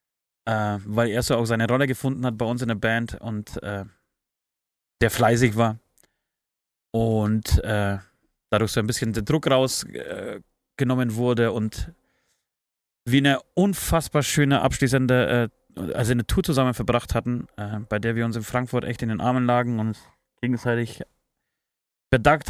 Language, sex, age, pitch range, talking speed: German, male, 30-49, 115-170 Hz, 150 wpm